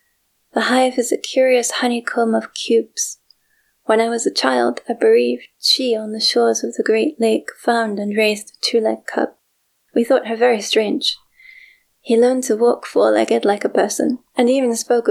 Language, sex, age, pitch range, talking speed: English, female, 20-39, 220-255 Hz, 180 wpm